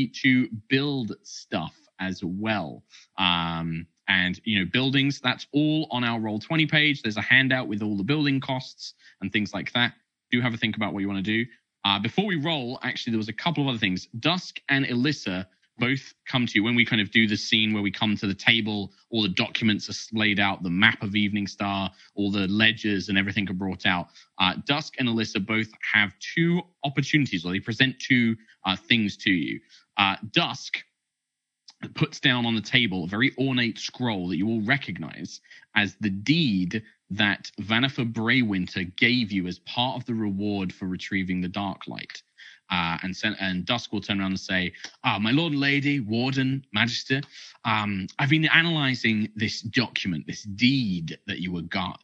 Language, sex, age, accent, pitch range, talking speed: English, male, 20-39, British, 100-130 Hz, 195 wpm